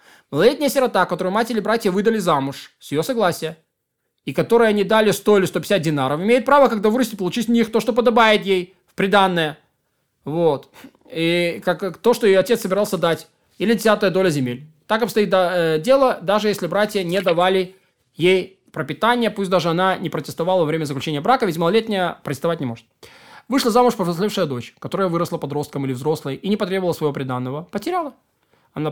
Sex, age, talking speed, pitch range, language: male, 20-39, 175 wpm, 145-205 Hz, Russian